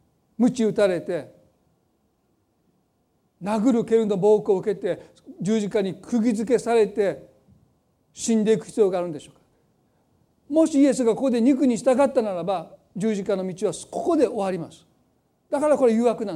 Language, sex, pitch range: Japanese, male, 205-270 Hz